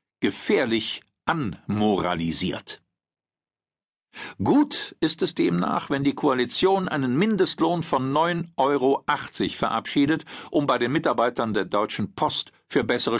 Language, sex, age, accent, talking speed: German, male, 50-69, German, 110 wpm